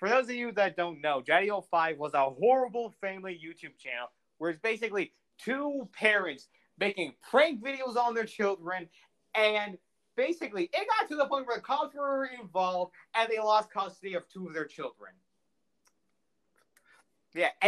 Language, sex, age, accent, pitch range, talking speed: English, male, 30-49, American, 165-235 Hz, 160 wpm